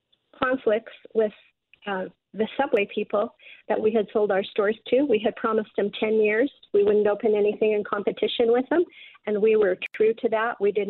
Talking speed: 195 wpm